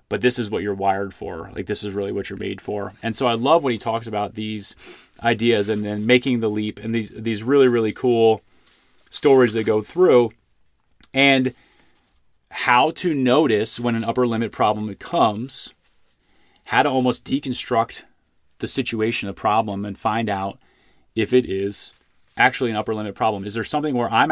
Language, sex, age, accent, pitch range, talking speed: English, male, 30-49, American, 105-125 Hz, 185 wpm